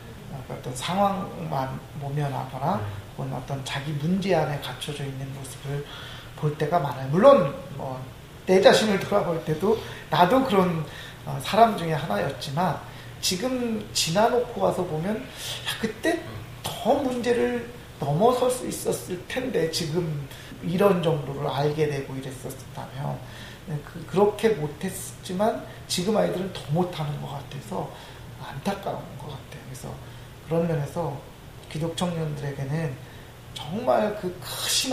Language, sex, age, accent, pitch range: Korean, male, 40-59, native, 135-180 Hz